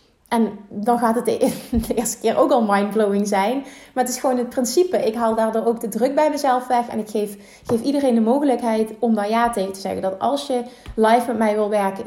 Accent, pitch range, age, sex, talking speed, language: Dutch, 220-285 Hz, 30-49, female, 235 wpm, Dutch